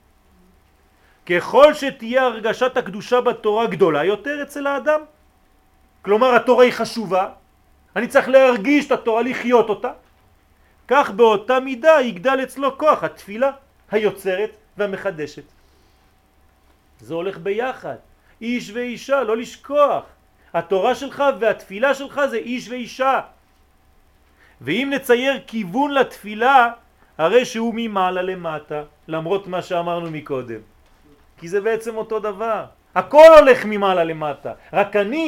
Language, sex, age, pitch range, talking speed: French, male, 40-59, 160-240 Hz, 110 wpm